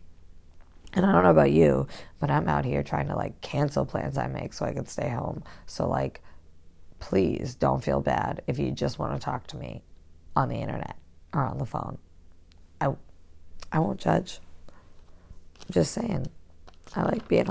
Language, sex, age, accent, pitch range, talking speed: English, female, 30-49, American, 80-85 Hz, 185 wpm